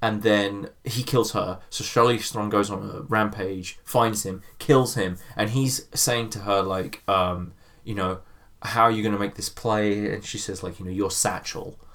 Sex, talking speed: male, 205 wpm